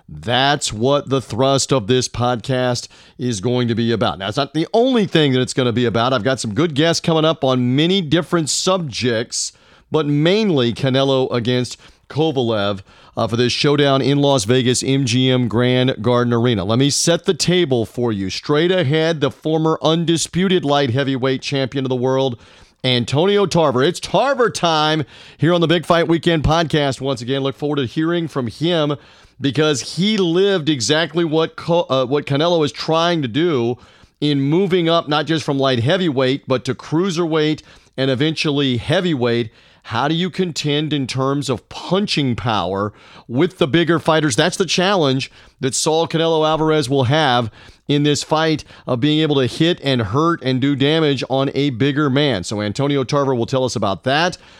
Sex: male